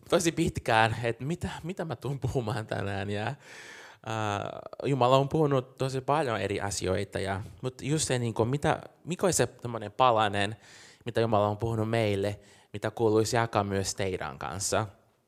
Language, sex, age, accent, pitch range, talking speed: Finnish, male, 20-39, native, 105-130 Hz, 145 wpm